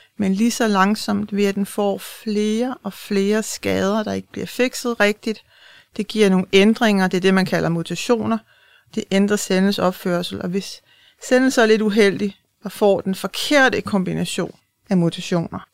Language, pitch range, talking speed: Danish, 185-215 Hz, 170 wpm